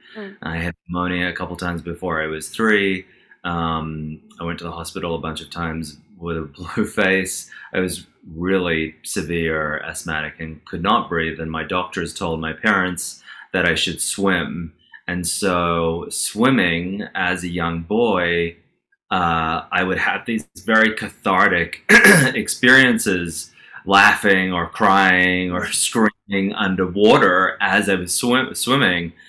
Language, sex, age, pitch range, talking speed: English, male, 20-39, 85-95 Hz, 140 wpm